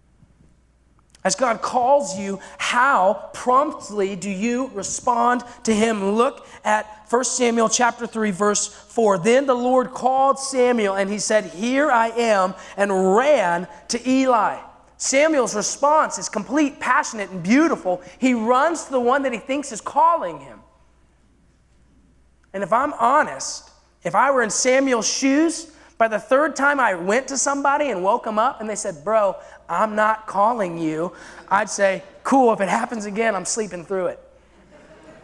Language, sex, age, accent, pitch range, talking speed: English, male, 30-49, American, 160-240 Hz, 160 wpm